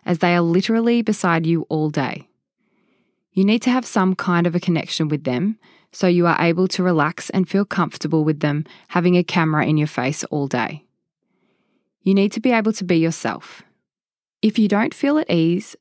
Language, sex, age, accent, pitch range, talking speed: English, female, 20-39, Australian, 160-200 Hz, 195 wpm